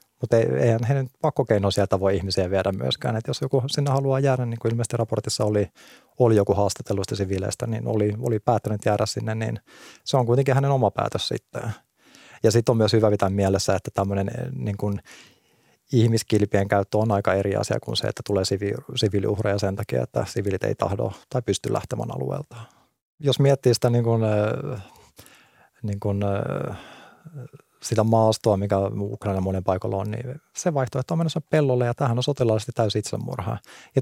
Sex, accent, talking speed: male, native, 175 wpm